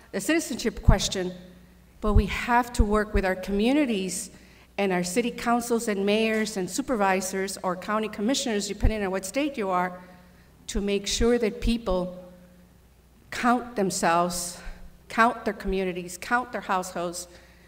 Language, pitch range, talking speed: English, 185-230 Hz, 140 wpm